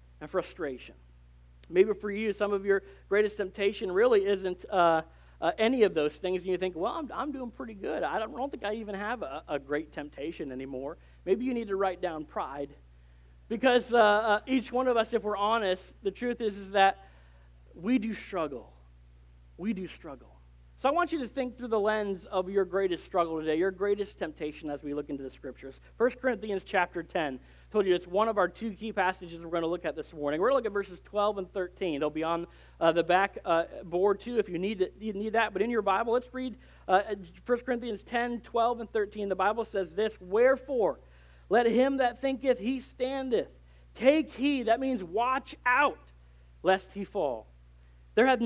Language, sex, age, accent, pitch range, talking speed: English, male, 40-59, American, 150-230 Hz, 210 wpm